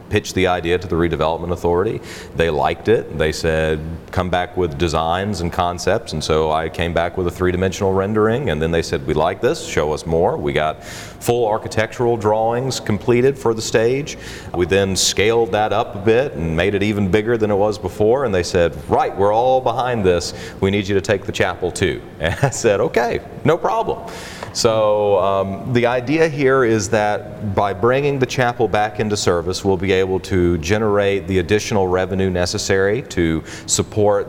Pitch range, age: 85-105 Hz, 40-59